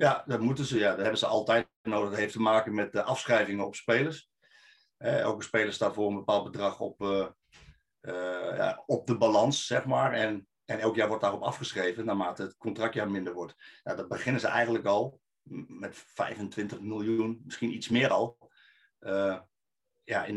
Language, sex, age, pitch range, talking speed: Dutch, male, 50-69, 105-120 Hz, 190 wpm